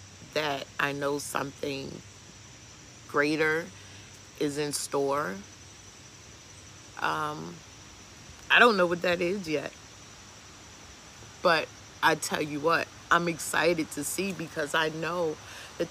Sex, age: female, 30-49